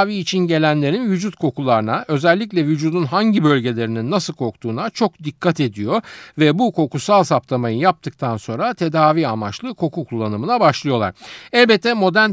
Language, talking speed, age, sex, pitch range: Turkish, 125 wpm, 50-69, male, 120-190 Hz